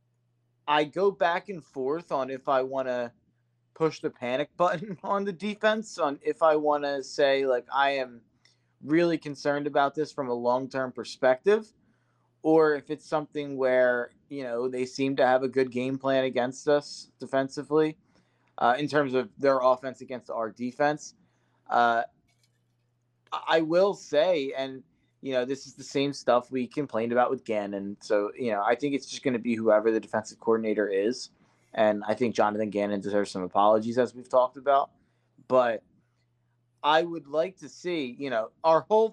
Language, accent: English, American